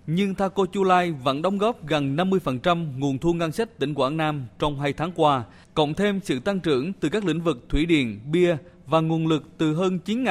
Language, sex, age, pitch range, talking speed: Vietnamese, male, 20-39, 140-185 Hz, 215 wpm